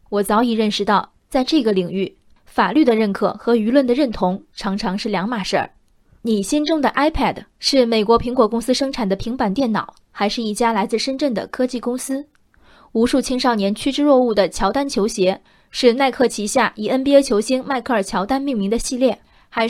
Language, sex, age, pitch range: Chinese, female, 20-39, 210-265 Hz